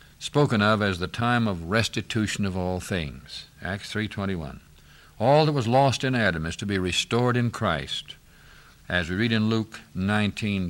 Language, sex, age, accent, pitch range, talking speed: English, male, 60-79, American, 95-120 Hz, 180 wpm